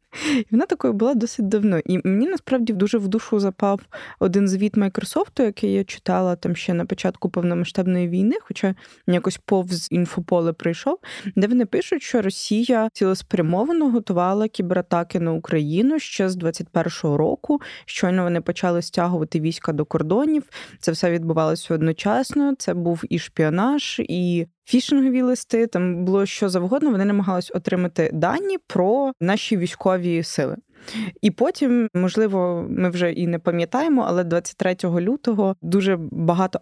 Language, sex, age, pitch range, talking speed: English, female, 20-39, 175-220 Hz, 145 wpm